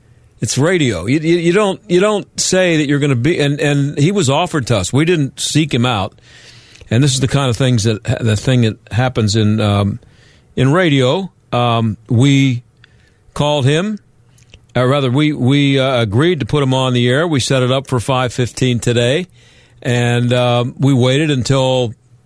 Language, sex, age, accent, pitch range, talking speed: English, male, 50-69, American, 115-145 Hz, 190 wpm